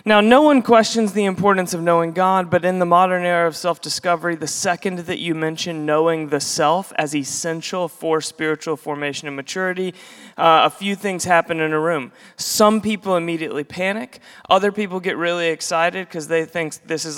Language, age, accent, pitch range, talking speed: English, 30-49, American, 160-205 Hz, 185 wpm